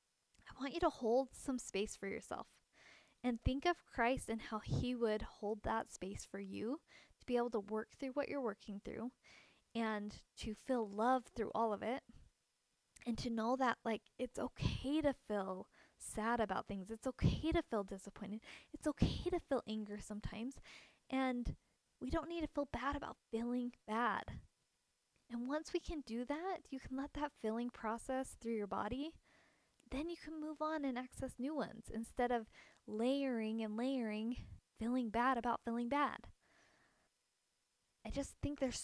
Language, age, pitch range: English, 10-29, 225-280 Hz